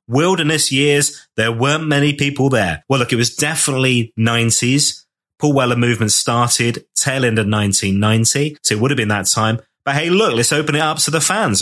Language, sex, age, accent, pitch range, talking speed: English, male, 30-49, British, 110-145 Hz, 195 wpm